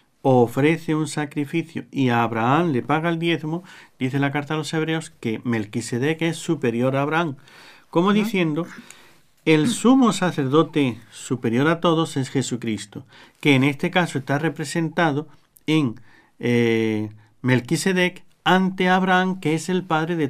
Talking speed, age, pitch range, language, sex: 140 wpm, 50-69, 125-165 Hz, Spanish, male